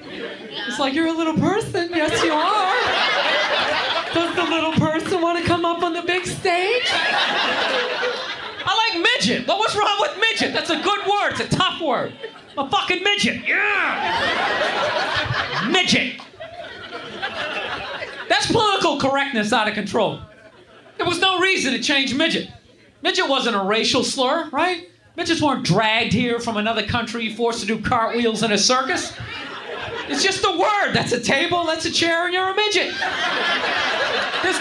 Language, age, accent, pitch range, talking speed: Danish, 40-59, American, 255-360 Hz, 160 wpm